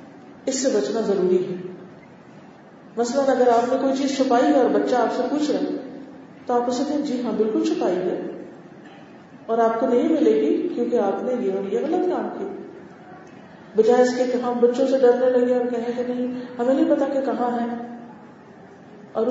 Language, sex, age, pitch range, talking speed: Urdu, female, 40-59, 205-265 Hz, 200 wpm